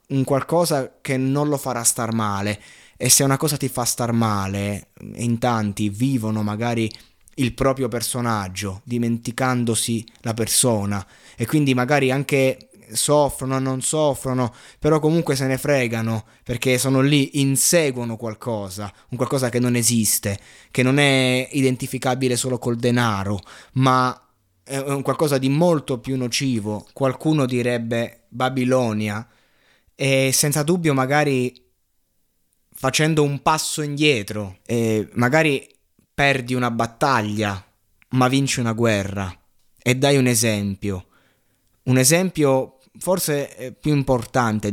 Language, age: Italian, 20-39